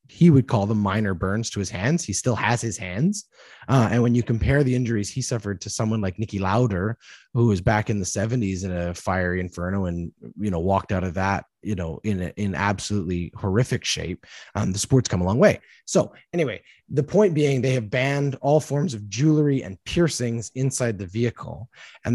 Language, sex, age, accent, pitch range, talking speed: English, male, 30-49, American, 100-130 Hz, 210 wpm